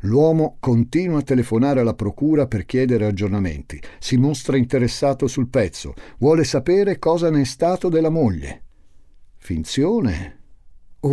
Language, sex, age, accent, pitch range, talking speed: Italian, male, 50-69, native, 85-120 Hz, 130 wpm